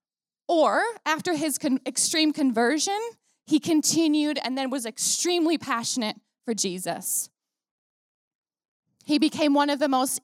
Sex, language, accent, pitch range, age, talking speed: female, English, American, 225-300 Hz, 20-39, 115 wpm